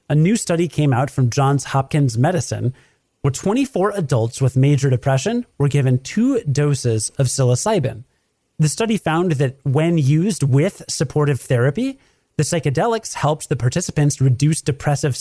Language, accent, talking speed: English, American, 145 wpm